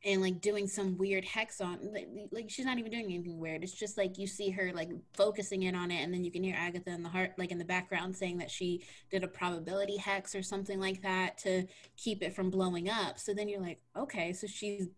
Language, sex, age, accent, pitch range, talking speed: English, female, 20-39, American, 180-210 Hz, 250 wpm